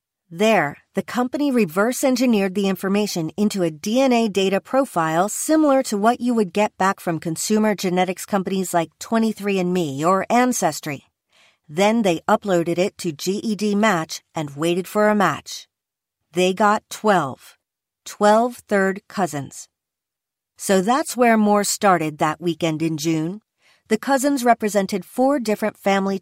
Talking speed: 135 wpm